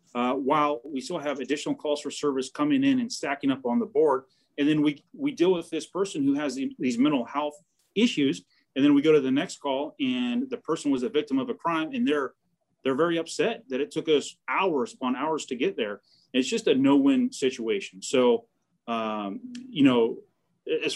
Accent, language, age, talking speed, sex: American, English, 30-49, 215 wpm, male